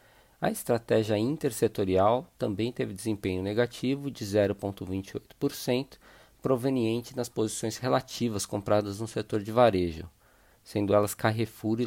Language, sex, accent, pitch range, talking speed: Portuguese, male, Brazilian, 105-125 Hz, 110 wpm